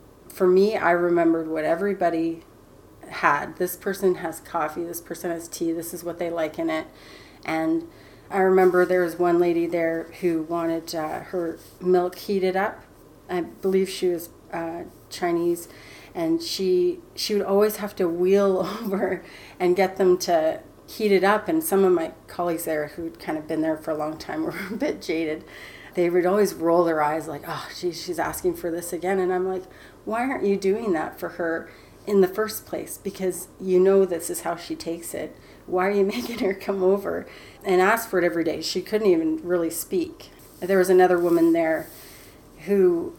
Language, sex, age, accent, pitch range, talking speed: English, female, 30-49, American, 170-195 Hz, 190 wpm